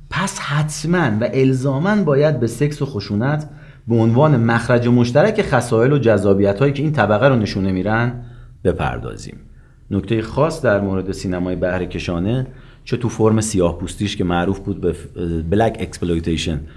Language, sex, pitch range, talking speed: Persian, male, 85-125 Hz, 155 wpm